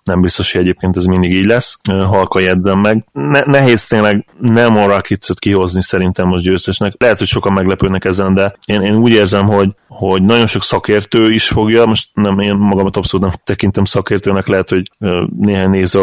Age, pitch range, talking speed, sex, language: 20-39, 95-105 Hz, 185 wpm, male, Hungarian